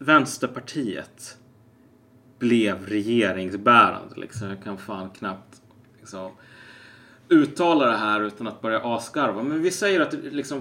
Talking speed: 120 wpm